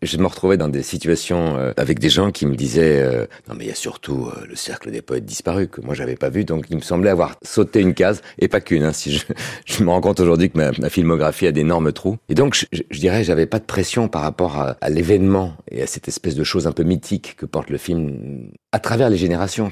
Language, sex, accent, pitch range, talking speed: French, male, French, 75-95 Hz, 275 wpm